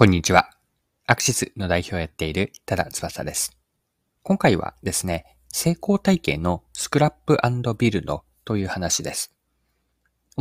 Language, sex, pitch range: Japanese, male, 85-135 Hz